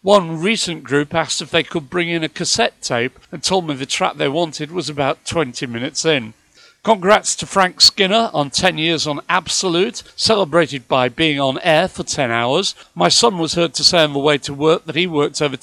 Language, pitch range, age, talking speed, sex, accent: English, 140-175 Hz, 50-69, 215 wpm, male, British